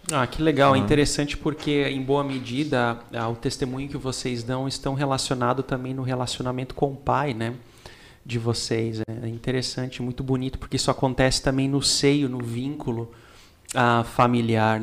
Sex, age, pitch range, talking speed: male, 30-49, 125-140 Hz, 160 wpm